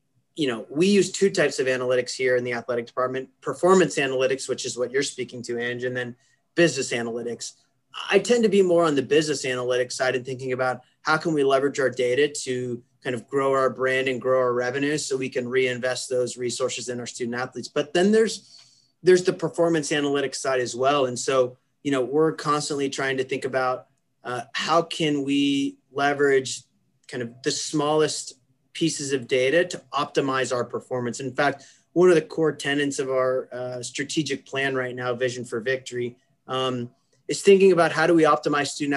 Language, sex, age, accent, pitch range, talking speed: English, male, 30-49, American, 125-155 Hz, 195 wpm